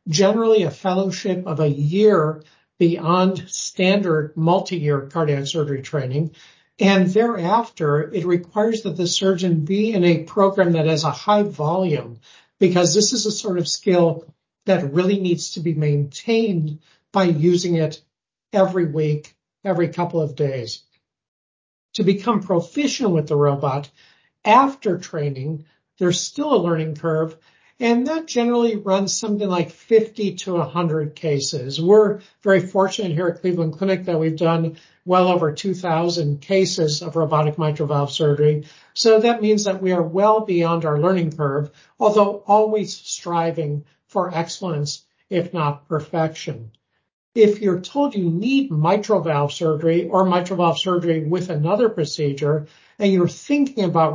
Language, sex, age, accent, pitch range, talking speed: English, male, 60-79, American, 155-195 Hz, 145 wpm